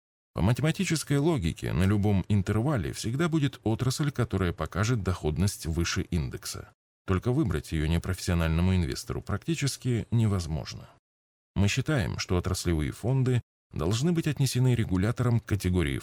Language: Russian